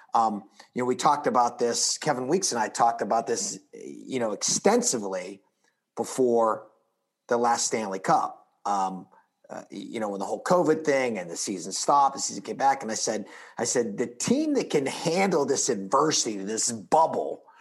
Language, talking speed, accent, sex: English, 180 wpm, American, male